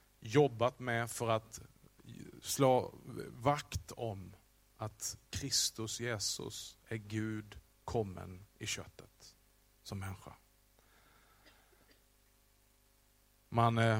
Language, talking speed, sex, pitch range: Swedish, 75 wpm, male, 110-135 Hz